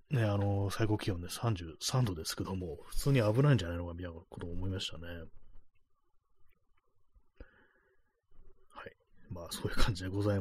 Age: 30-49